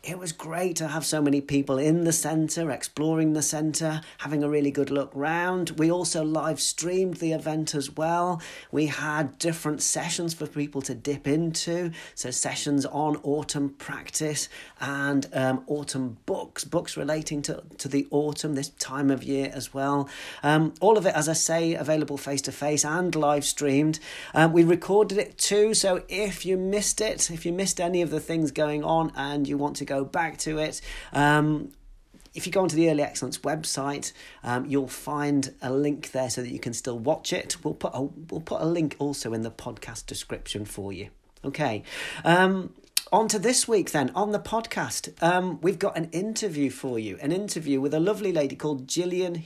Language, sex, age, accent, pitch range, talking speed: English, male, 40-59, British, 140-170 Hz, 190 wpm